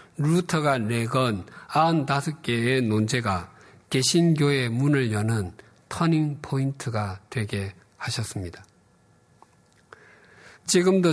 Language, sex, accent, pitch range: Korean, male, native, 110-150 Hz